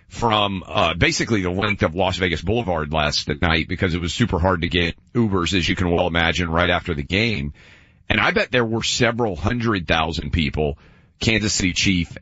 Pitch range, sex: 85-115 Hz, male